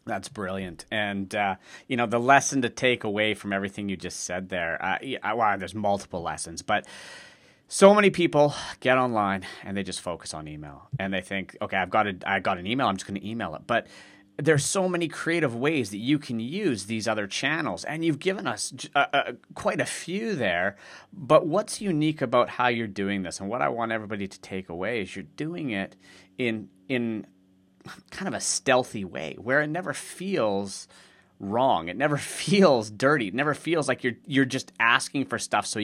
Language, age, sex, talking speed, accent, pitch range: English, 30-49, male, 210 wpm, American, 95-135 Hz